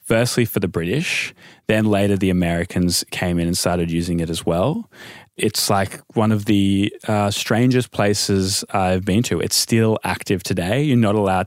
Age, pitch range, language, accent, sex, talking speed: 20-39, 85-105 Hz, English, Australian, male, 180 wpm